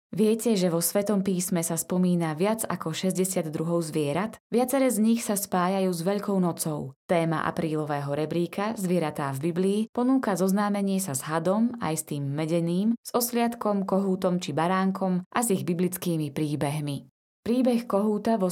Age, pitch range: 20-39, 165-210 Hz